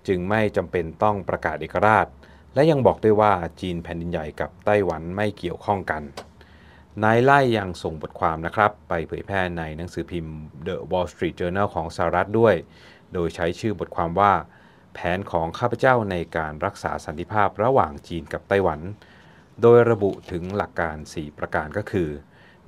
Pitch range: 85-105 Hz